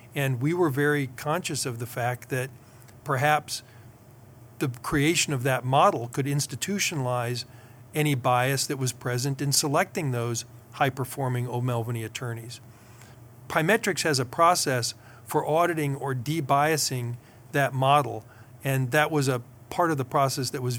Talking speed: 140 wpm